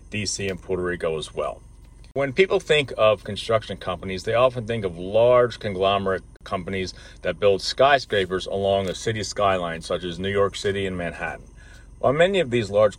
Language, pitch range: English, 95-115 Hz